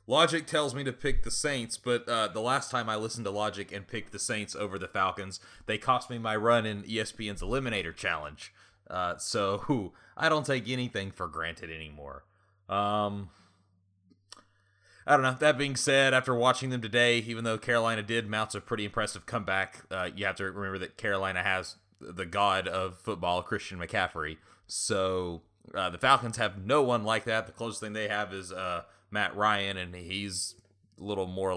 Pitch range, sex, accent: 90-110 Hz, male, American